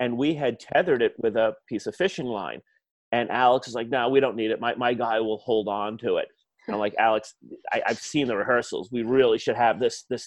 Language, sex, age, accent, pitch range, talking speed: English, male, 40-59, American, 120-145 Hz, 250 wpm